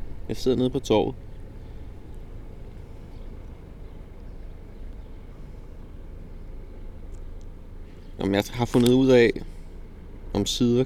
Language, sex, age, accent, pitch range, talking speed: Danish, male, 20-39, native, 85-110 Hz, 65 wpm